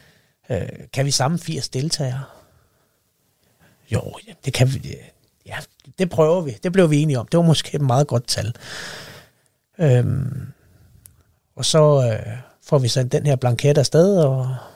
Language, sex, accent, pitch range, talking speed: Danish, male, native, 120-150 Hz, 150 wpm